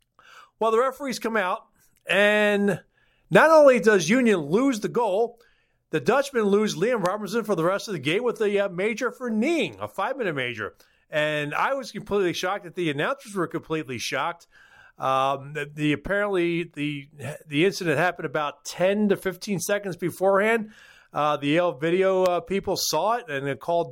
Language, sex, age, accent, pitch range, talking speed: English, male, 40-59, American, 160-200 Hz, 175 wpm